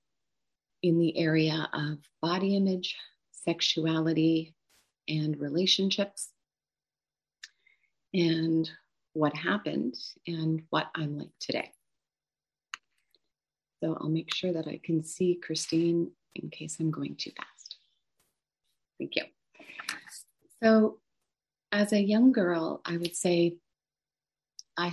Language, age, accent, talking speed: English, 30-49, American, 105 wpm